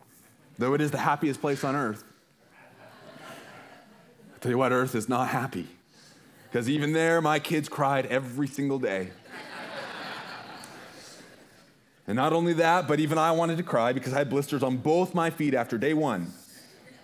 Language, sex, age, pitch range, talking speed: English, male, 30-49, 100-130 Hz, 160 wpm